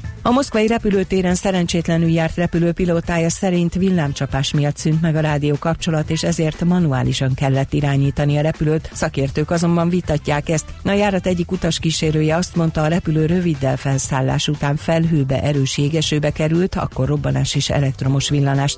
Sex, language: female, Hungarian